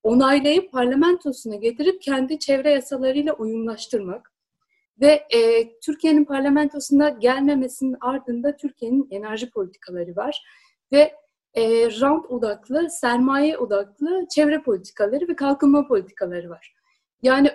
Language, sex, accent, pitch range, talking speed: Turkish, female, native, 230-290 Hz, 105 wpm